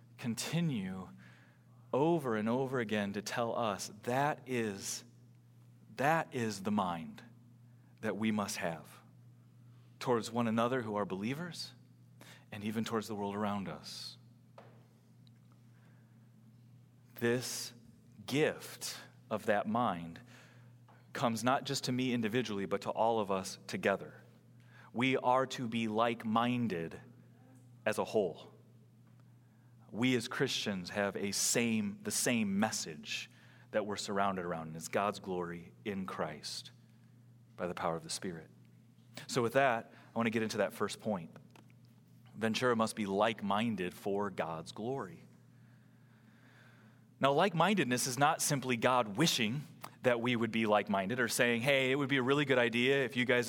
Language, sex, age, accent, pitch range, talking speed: English, male, 30-49, American, 110-125 Hz, 140 wpm